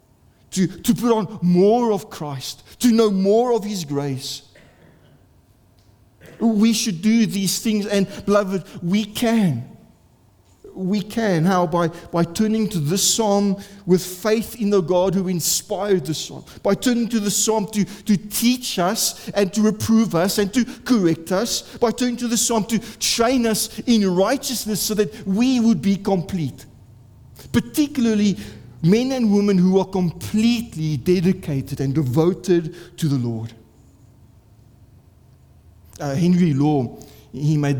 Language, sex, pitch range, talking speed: English, male, 155-215 Hz, 145 wpm